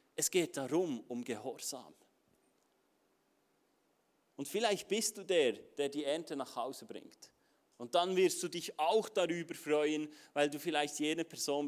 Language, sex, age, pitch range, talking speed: German, male, 40-59, 155-205 Hz, 150 wpm